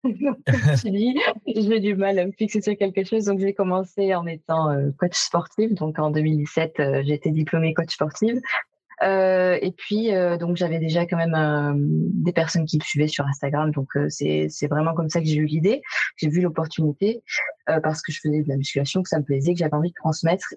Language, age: French, 20-39